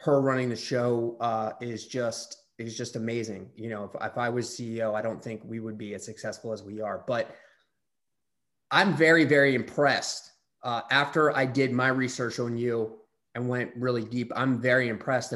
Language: English